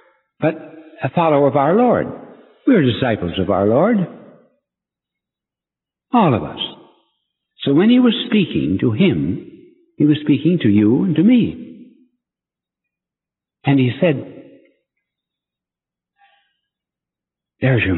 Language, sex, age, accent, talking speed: English, male, 60-79, American, 115 wpm